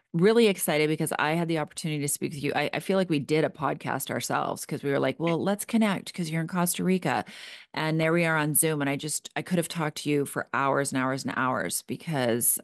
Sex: female